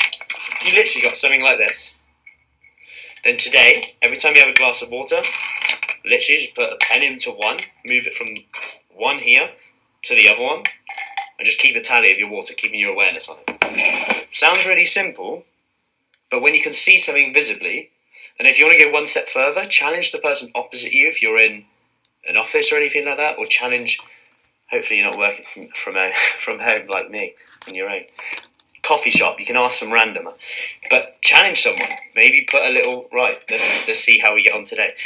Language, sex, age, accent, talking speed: English, male, 20-39, British, 195 wpm